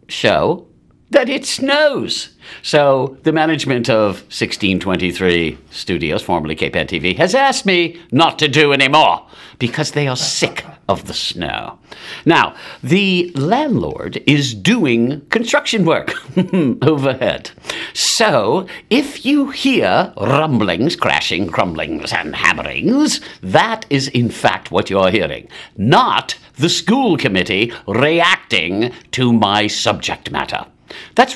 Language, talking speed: English, 115 wpm